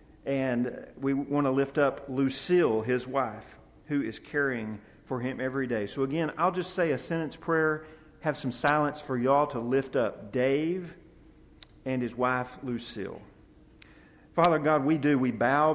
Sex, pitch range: male, 115-145 Hz